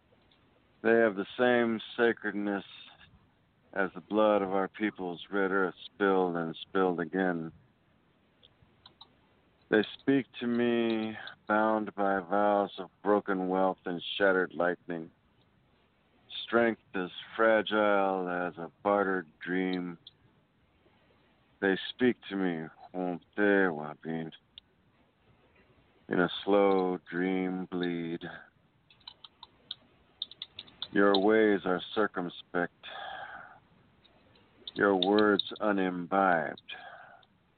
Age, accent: 50-69, American